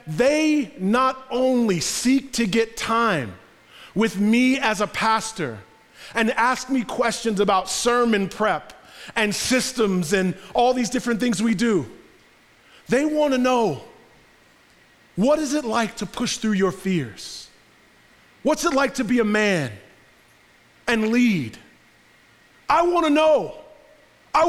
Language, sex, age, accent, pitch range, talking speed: English, male, 30-49, American, 155-245 Hz, 135 wpm